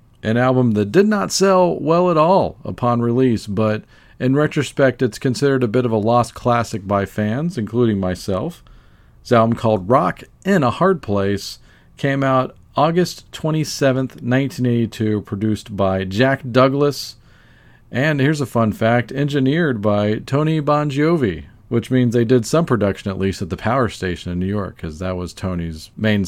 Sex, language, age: male, English, 40-59